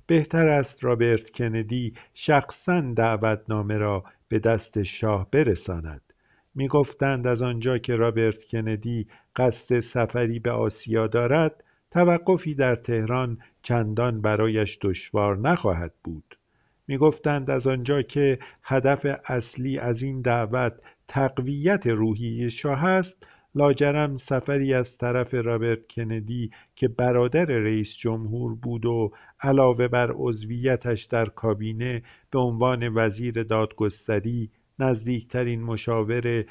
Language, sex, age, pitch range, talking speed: Persian, male, 50-69, 110-135 Hz, 110 wpm